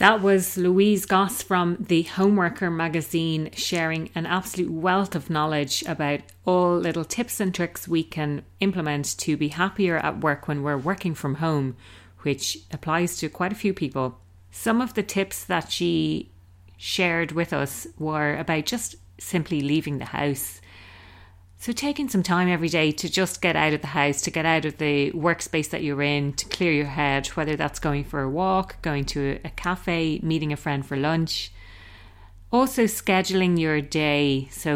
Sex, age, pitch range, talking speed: female, 30-49, 140-175 Hz, 175 wpm